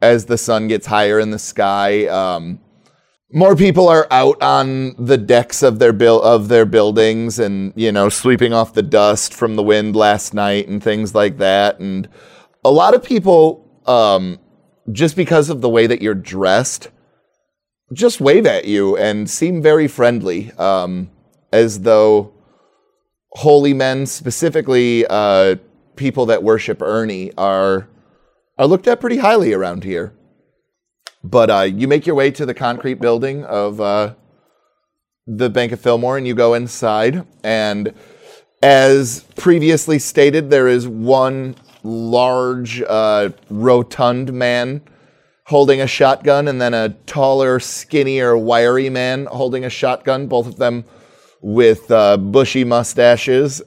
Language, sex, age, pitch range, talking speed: English, male, 30-49, 105-135 Hz, 145 wpm